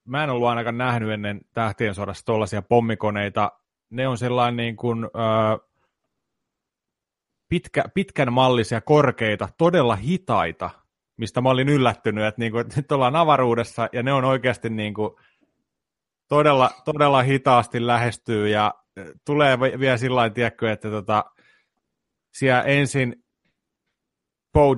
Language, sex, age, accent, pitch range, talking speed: Finnish, male, 30-49, native, 110-130 Hz, 125 wpm